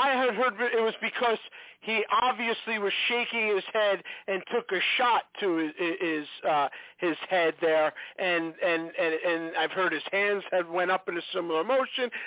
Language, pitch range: English, 175-235 Hz